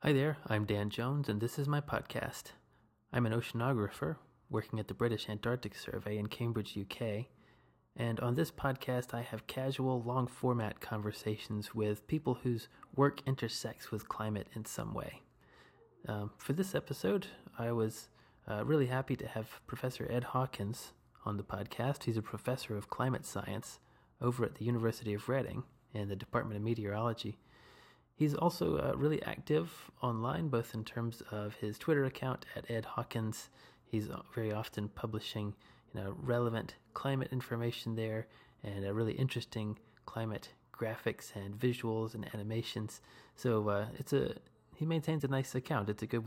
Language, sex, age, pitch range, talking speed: English, male, 30-49, 110-130 Hz, 160 wpm